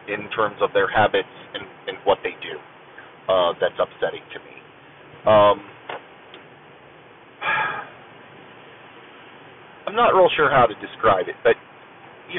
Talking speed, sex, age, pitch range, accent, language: 125 wpm, male, 30-49, 120-170 Hz, American, English